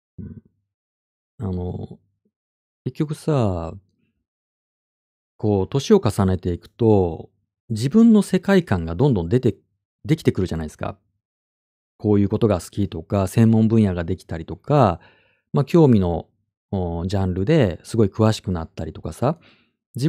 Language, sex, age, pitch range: Japanese, male, 40-59, 95-155 Hz